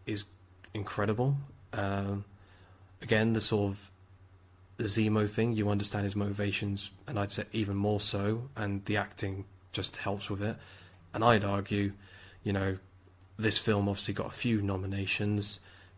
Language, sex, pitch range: English, male, 95-105 Hz